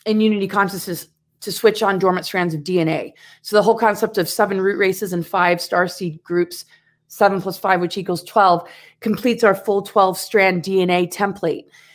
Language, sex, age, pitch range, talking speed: English, female, 30-49, 180-215 Hz, 180 wpm